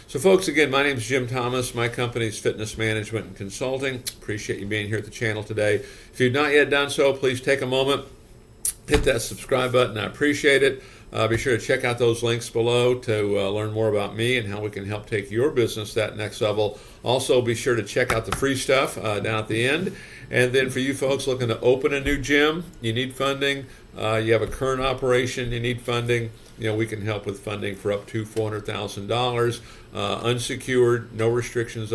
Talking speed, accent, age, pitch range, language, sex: 220 wpm, American, 50-69, 110-135 Hz, English, male